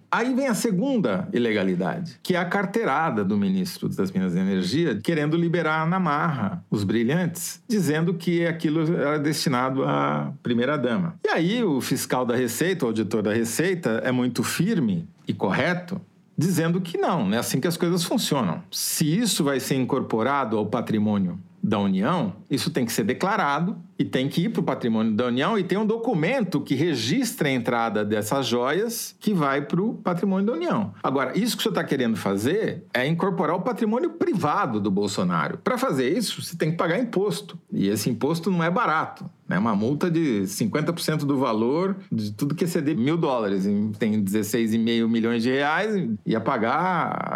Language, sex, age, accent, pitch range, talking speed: Portuguese, male, 40-59, Brazilian, 125-190 Hz, 180 wpm